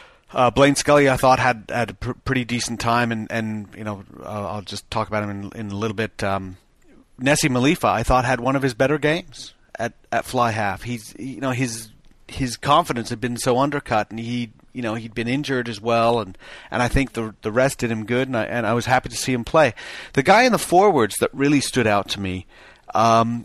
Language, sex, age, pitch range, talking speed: English, male, 40-59, 110-130 Hz, 240 wpm